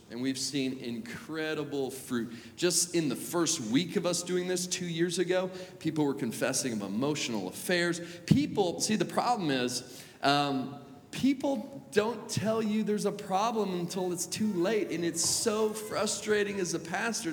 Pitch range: 115-185 Hz